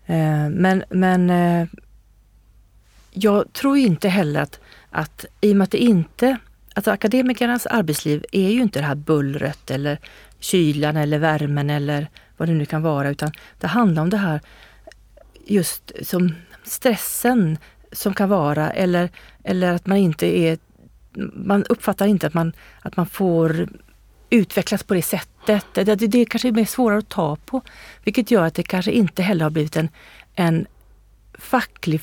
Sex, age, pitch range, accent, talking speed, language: female, 40-59, 150-205 Hz, native, 160 wpm, Swedish